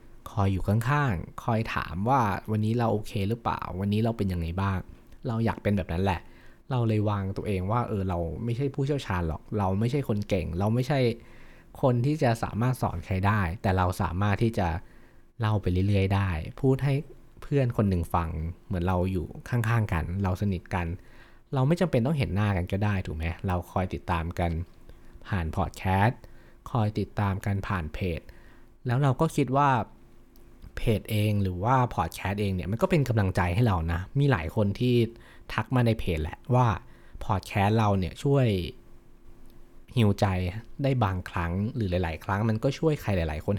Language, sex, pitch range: Thai, male, 90-120 Hz